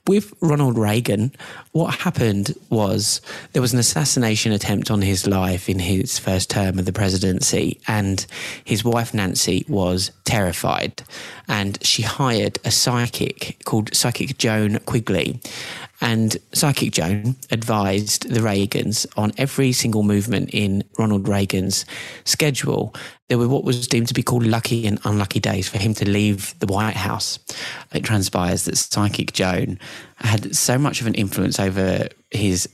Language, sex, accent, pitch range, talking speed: English, male, British, 95-120 Hz, 150 wpm